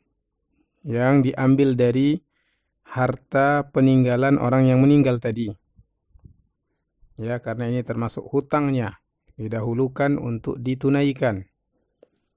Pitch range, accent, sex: 110-130 Hz, native, male